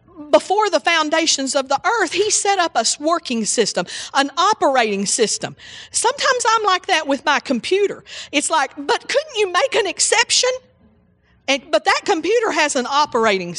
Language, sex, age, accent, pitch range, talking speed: English, female, 40-59, American, 225-315 Hz, 160 wpm